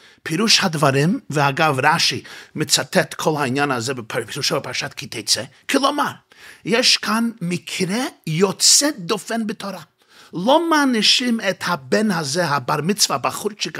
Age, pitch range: 50-69, 150-215 Hz